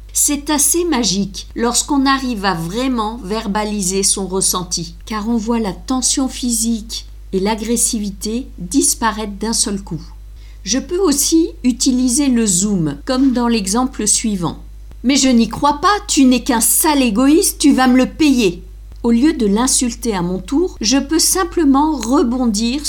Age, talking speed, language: 50-69, 150 wpm, French